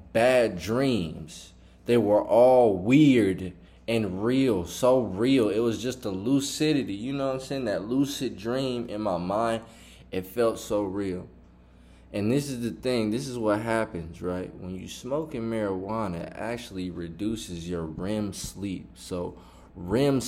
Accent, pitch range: American, 85-110 Hz